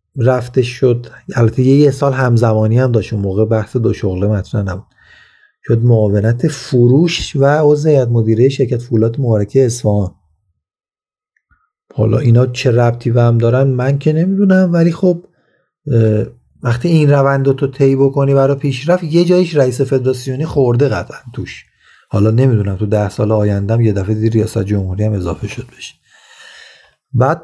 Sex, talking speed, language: male, 145 wpm, Persian